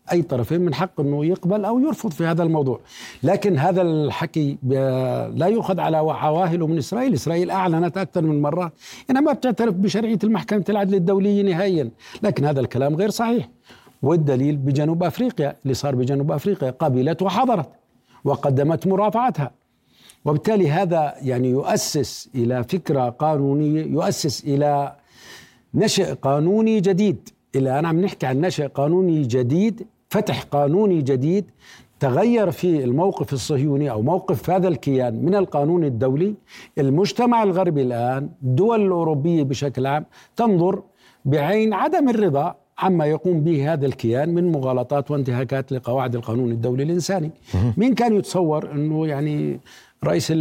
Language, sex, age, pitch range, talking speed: Arabic, male, 60-79, 140-190 Hz, 130 wpm